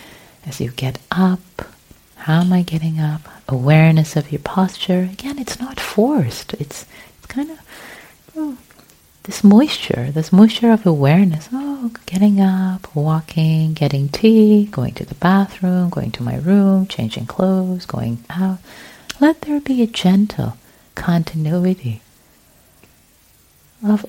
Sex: female